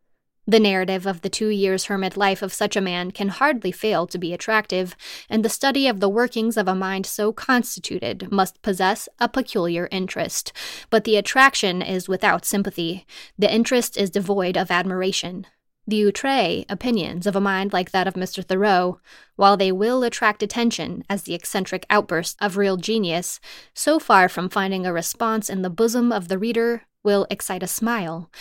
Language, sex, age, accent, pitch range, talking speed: English, female, 20-39, American, 185-230 Hz, 180 wpm